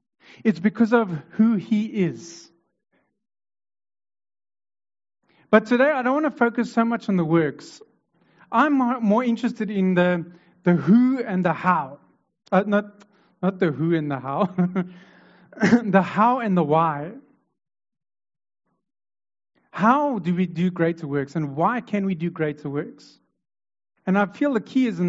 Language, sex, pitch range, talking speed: English, male, 170-230 Hz, 145 wpm